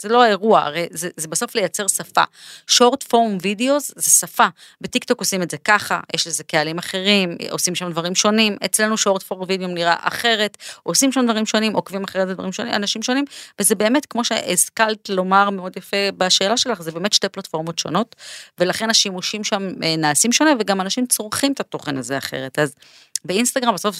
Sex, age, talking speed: female, 30-49, 175 wpm